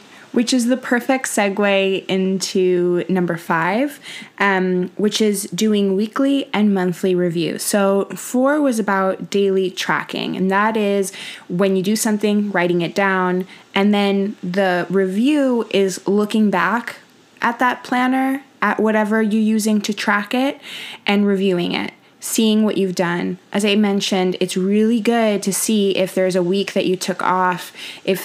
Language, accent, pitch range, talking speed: English, American, 185-215 Hz, 155 wpm